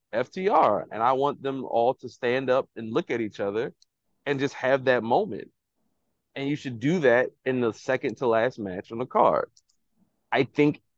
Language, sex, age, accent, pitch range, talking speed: English, male, 20-39, American, 115-135 Hz, 190 wpm